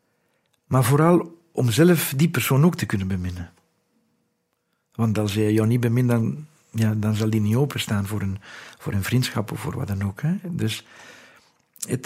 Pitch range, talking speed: 110-155 Hz, 175 wpm